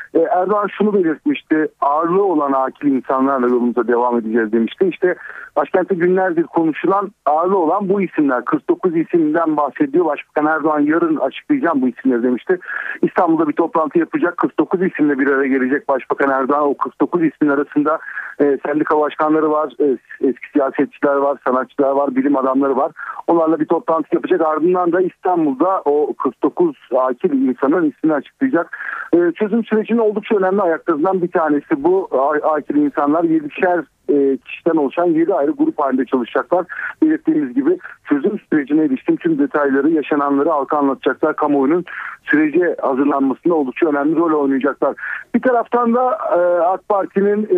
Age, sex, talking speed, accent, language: 50-69, male, 135 wpm, native, Turkish